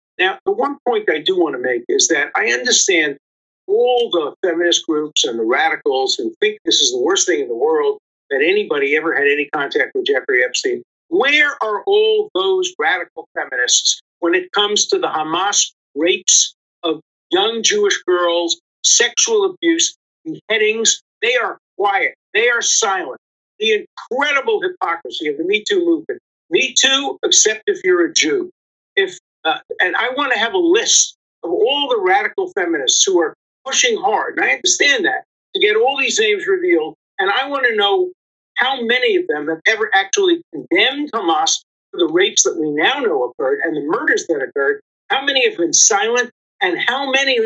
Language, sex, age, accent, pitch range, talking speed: English, male, 50-69, American, 335-425 Hz, 180 wpm